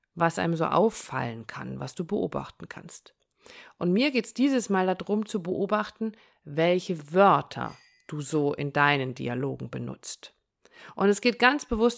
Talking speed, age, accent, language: 155 wpm, 50-69, German, German